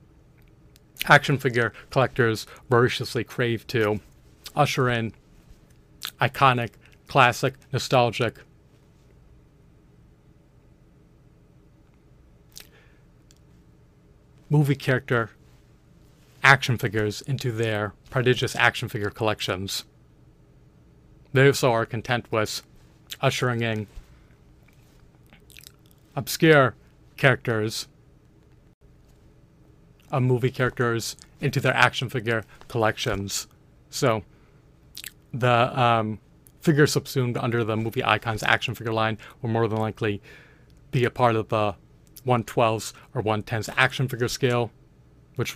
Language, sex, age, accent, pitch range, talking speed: English, male, 40-59, American, 110-135 Hz, 85 wpm